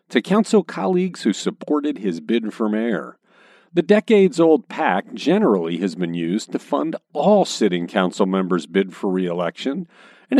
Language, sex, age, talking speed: English, male, 50-69, 150 wpm